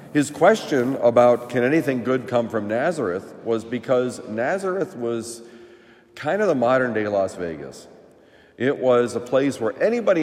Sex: male